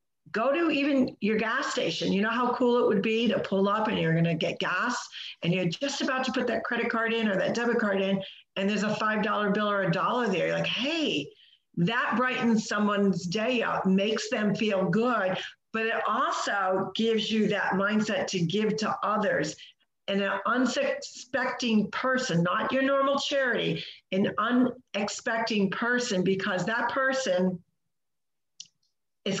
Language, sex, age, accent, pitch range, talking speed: English, female, 50-69, American, 190-235 Hz, 170 wpm